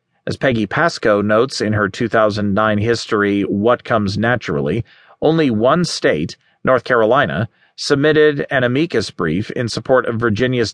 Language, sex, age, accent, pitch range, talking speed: English, male, 40-59, American, 110-135 Hz, 135 wpm